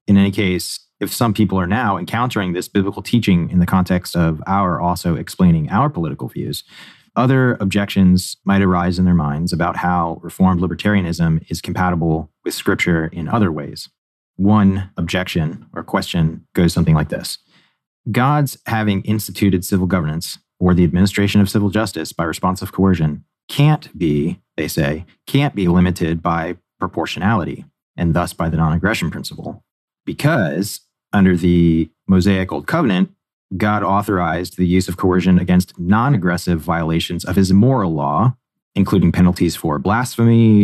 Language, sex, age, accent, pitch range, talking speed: English, male, 30-49, American, 85-100 Hz, 150 wpm